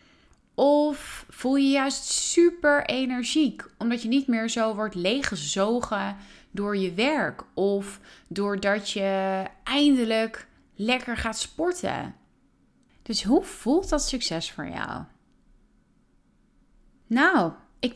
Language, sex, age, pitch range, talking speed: Dutch, female, 30-49, 190-260 Hz, 110 wpm